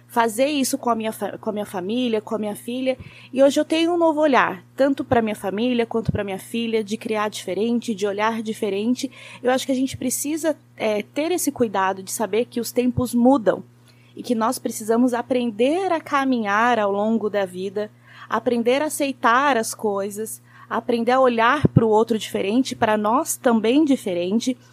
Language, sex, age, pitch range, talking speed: Portuguese, female, 20-39, 215-275 Hz, 190 wpm